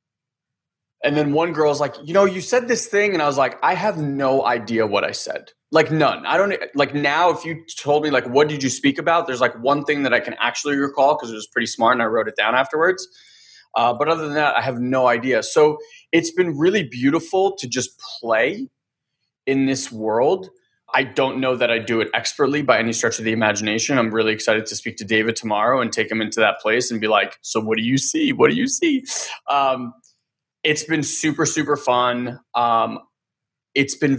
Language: English